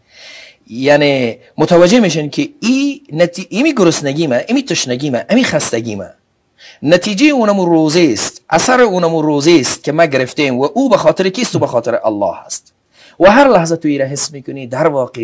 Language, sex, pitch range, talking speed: English, male, 140-210 Hz, 170 wpm